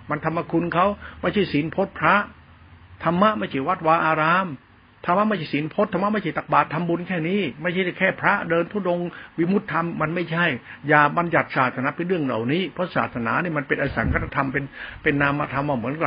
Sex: male